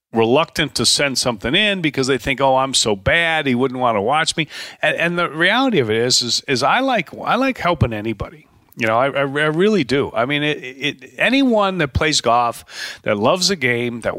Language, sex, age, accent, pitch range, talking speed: English, male, 40-59, American, 120-175 Hz, 220 wpm